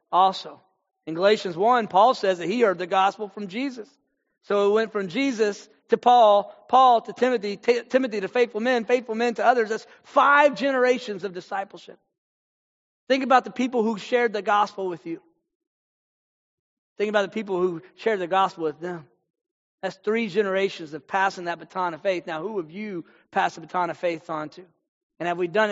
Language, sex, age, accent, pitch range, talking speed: English, male, 40-59, American, 180-225 Hz, 185 wpm